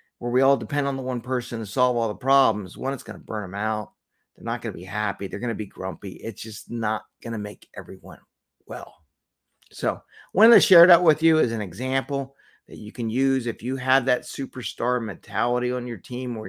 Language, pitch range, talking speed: English, 115-150 Hz, 230 wpm